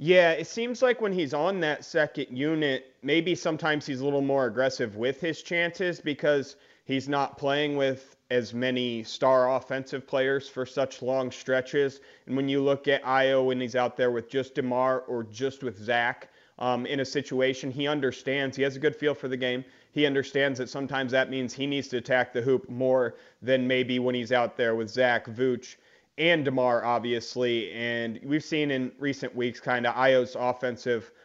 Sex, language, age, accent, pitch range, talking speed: male, English, 30-49, American, 125-140 Hz, 190 wpm